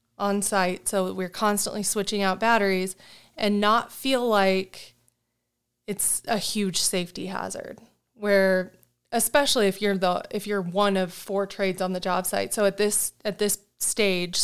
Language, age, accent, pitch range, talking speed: English, 20-39, American, 190-215 Hz, 160 wpm